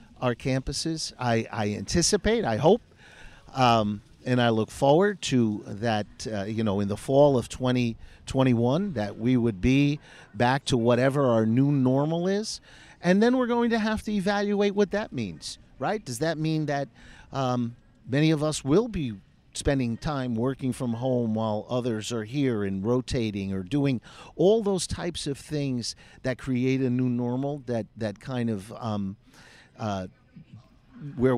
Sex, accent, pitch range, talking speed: male, American, 115-145 Hz, 165 wpm